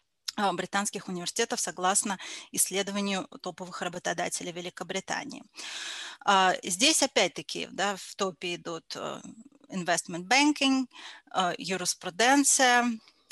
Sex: female